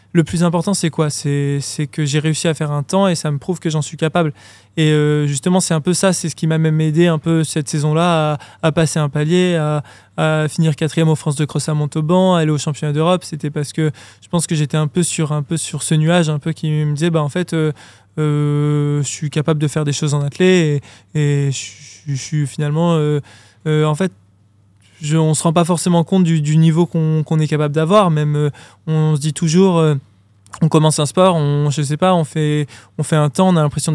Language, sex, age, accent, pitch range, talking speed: French, male, 20-39, French, 150-170 Hz, 250 wpm